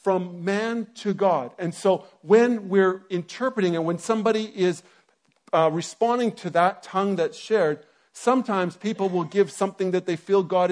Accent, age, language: American, 50-69, English